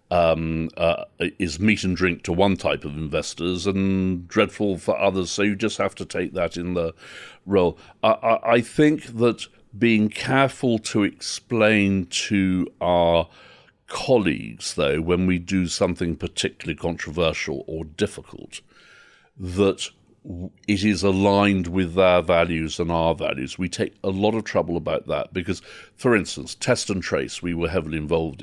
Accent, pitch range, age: British, 85-105 Hz, 50-69